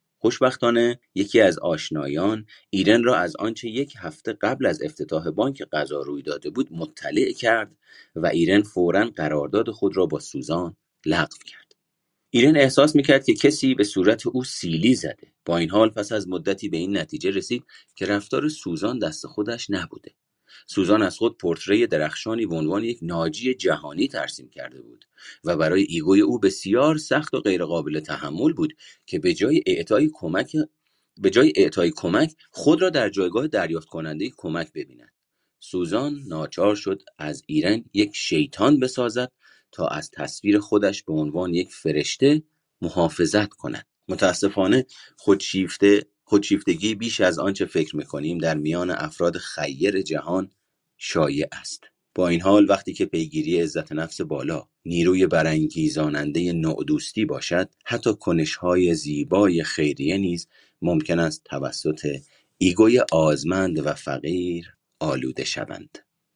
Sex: male